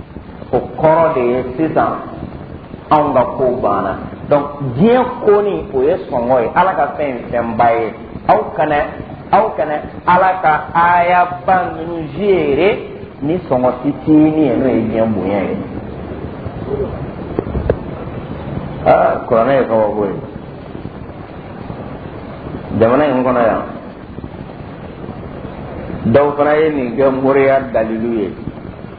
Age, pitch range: 50-69, 120-160 Hz